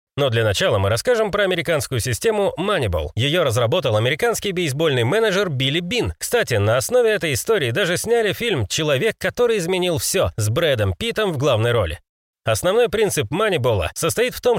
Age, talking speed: 30-49, 165 wpm